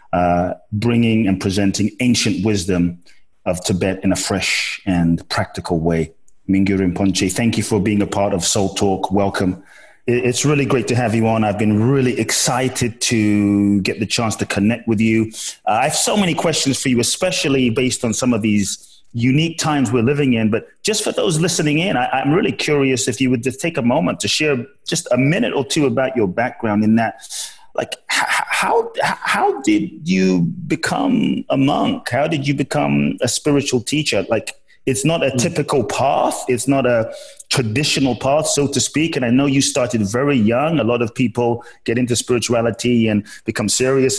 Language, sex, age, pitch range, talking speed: English, male, 30-49, 105-135 Hz, 190 wpm